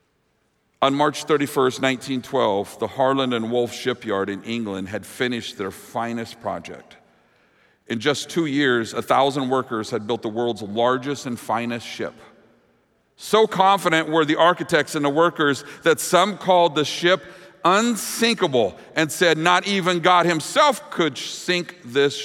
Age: 50-69